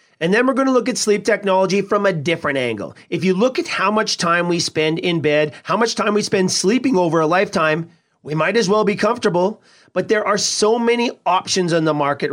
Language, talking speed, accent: English, 235 wpm, American